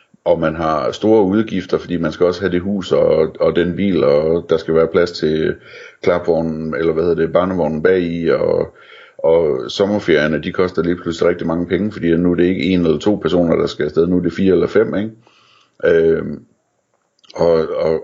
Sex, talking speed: male, 205 wpm